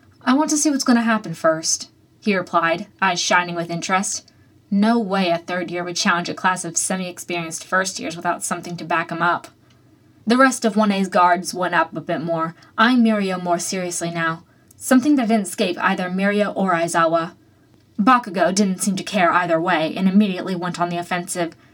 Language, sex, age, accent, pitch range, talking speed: English, female, 20-39, American, 175-225 Hz, 195 wpm